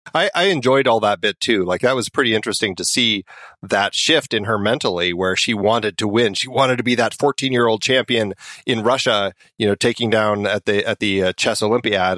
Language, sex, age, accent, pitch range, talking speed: English, male, 40-59, American, 105-130 Hz, 215 wpm